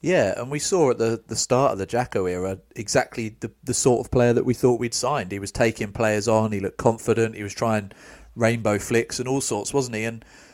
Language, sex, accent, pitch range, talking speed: English, male, British, 105-125 Hz, 240 wpm